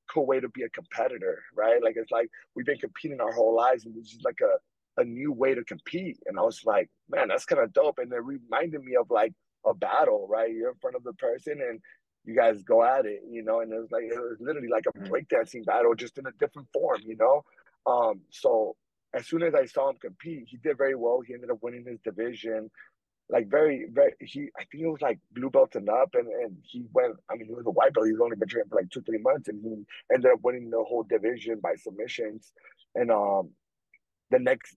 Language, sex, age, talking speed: English, male, 30-49, 240 wpm